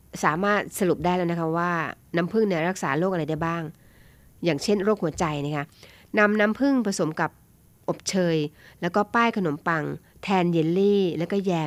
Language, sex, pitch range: Thai, female, 160-200 Hz